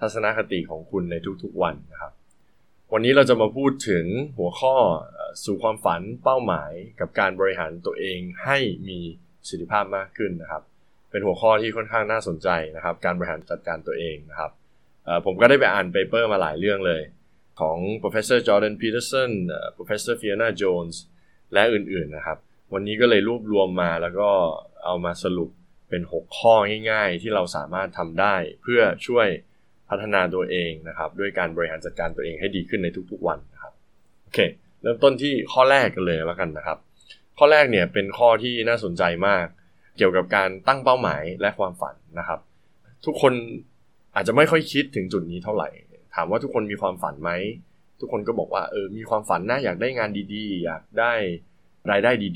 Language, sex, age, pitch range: Thai, male, 20-39, 90-120 Hz